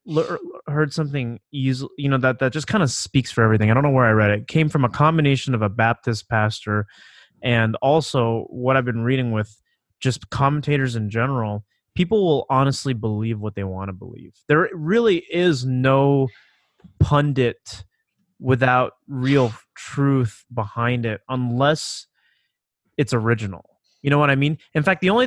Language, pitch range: English, 120-150 Hz